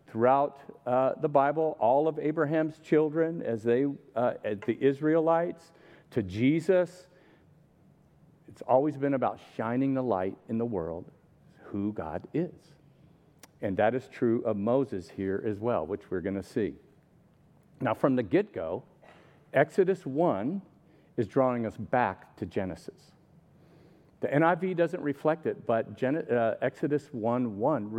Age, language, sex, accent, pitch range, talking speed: 50-69, English, male, American, 110-155 Hz, 140 wpm